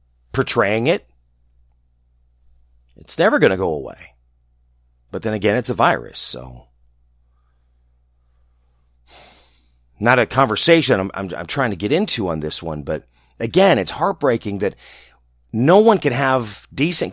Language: English